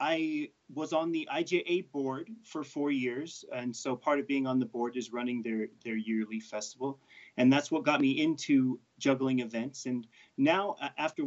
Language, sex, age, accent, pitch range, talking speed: English, male, 30-49, American, 135-210 Hz, 180 wpm